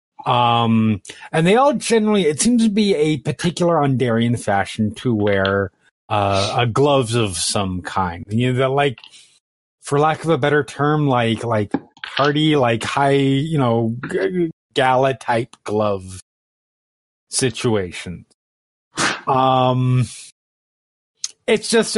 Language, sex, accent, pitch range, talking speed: English, male, American, 115-155 Hz, 125 wpm